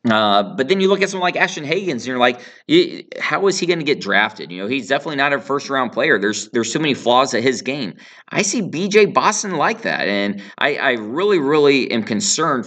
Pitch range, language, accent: 115-150 Hz, English, American